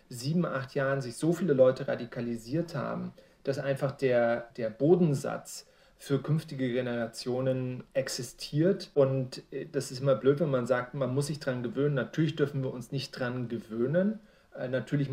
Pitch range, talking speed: 125-145 Hz, 155 wpm